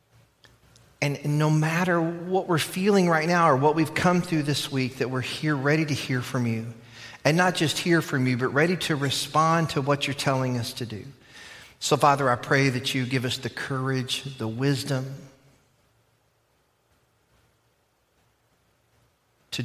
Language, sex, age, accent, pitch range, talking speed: English, male, 40-59, American, 115-145 Hz, 160 wpm